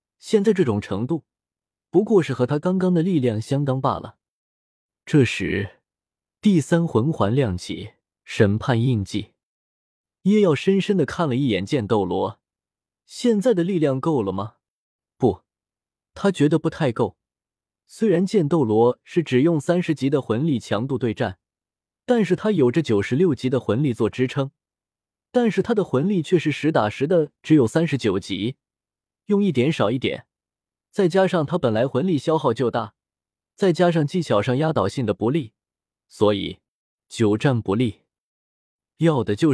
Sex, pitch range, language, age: male, 105-170 Hz, Chinese, 20-39